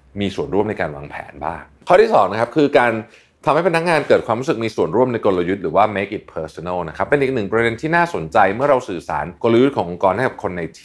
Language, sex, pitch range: Thai, male, 95-135 Hz